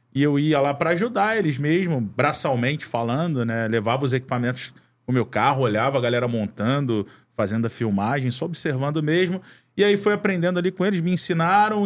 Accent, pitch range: Brazilian, 130-175 Hz